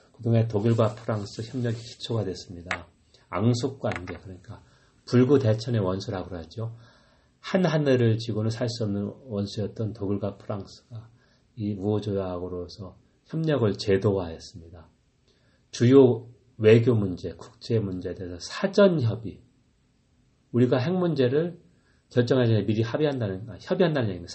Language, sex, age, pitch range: Korean, male, 40-59, 100-125 Hz